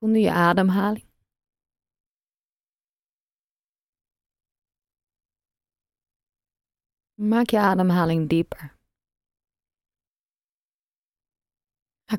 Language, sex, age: Dutch, female, 30-49